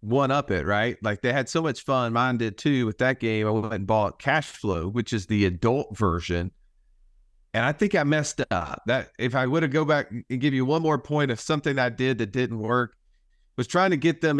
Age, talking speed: 40-59, 240 wpm